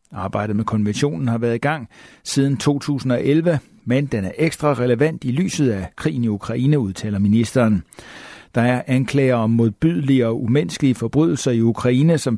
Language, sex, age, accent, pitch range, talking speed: Danish, male, 60-79, native, 110-135 Hz, 160 wpm